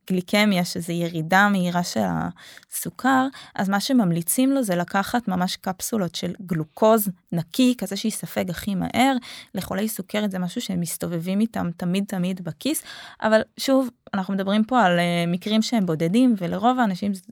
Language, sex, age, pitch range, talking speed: Hebrew, female, 20-39, 180-230 Hz, 150 wpm